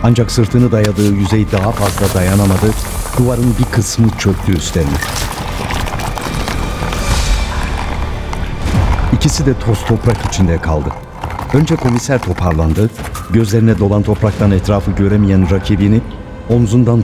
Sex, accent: male, native